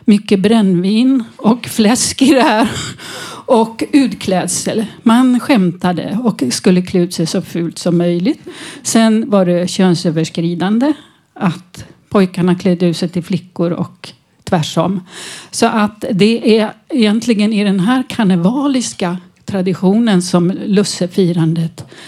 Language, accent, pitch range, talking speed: Swedish, native, 180-225 Hz, 120 wpm